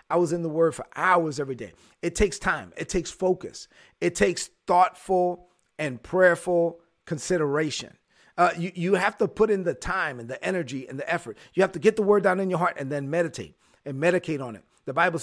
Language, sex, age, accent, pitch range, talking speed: English, male, 40-59, American, 155-190 Hz, 215 wpm